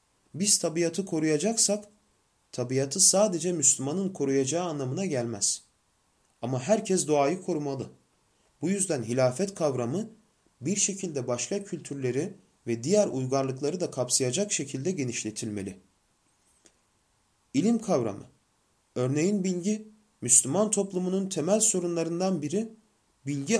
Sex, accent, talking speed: male, native, 95 wpm